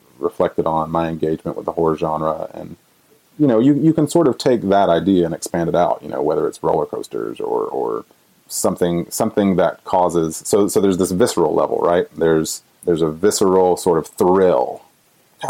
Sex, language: male, English